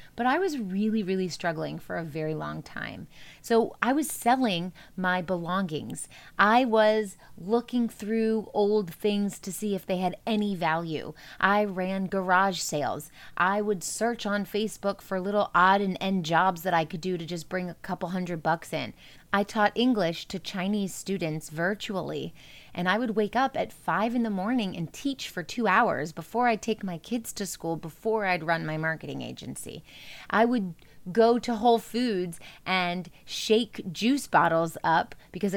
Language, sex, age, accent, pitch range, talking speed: English, female, 30-49, American, 165-220 Hz, 175 wpm